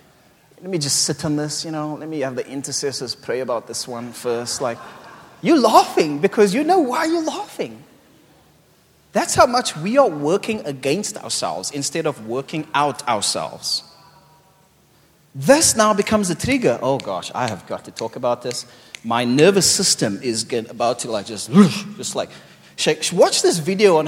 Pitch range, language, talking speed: 135-215 Hz, English, 170 wpm